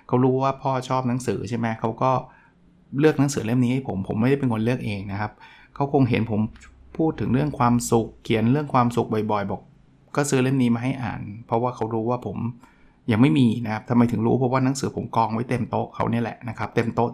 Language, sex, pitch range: Thai, male, 115-135 Hz